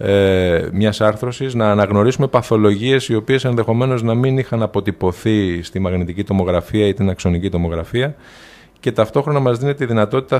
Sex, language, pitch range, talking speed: male, Greek, 95-115 Hz, 140 wpm